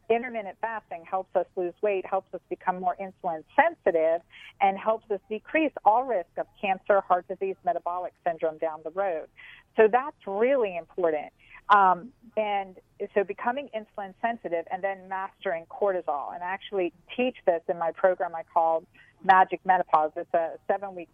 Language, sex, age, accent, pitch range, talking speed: English, female, 40-59, American, 175-220 Hz, 160 wpm